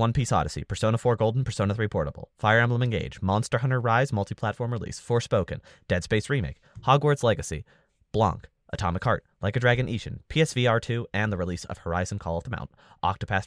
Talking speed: 185 wpm